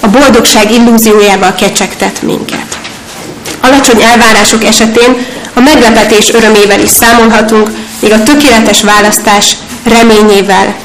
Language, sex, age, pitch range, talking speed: Hungarian, female, 30-49, 210-240 Hz, 100 wpm